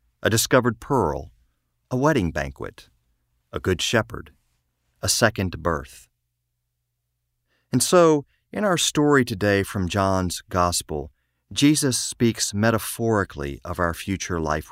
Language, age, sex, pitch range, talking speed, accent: English, 50-69, male, 75-105 Hz, 115 wpm, American